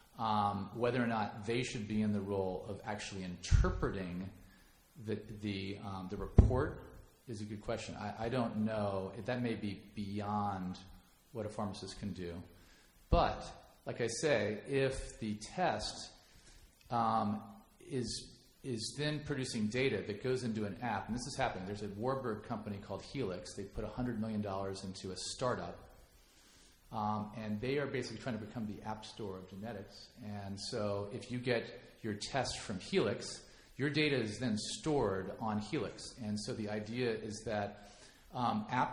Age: 40-59